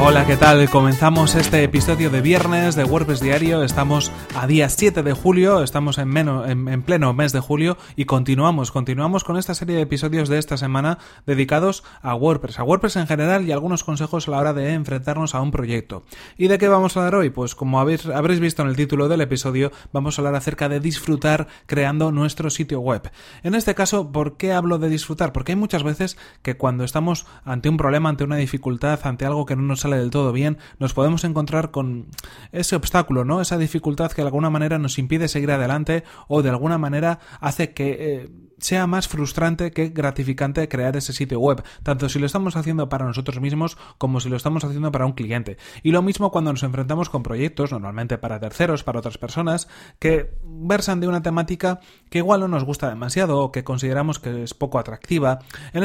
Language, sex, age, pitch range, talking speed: Spanish, male, 30-49, 135-165 Hz, 205 wpm